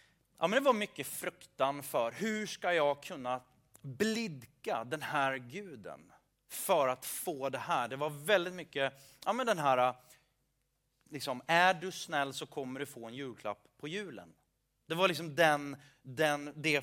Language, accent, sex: Swedish, native, male